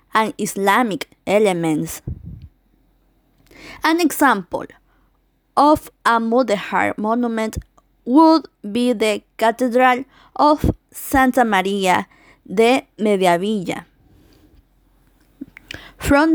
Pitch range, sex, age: 205-275 Hz, female, 20-39